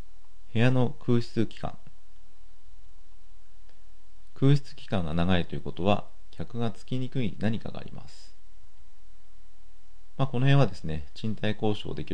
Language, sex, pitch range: Japanese, male, 85-115 Hz